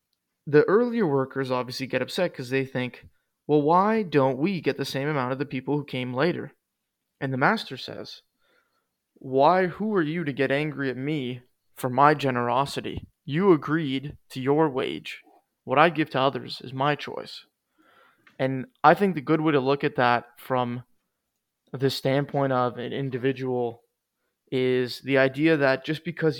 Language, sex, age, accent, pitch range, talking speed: English, male, 20-39, American, 130-150 Hz, 170 wpm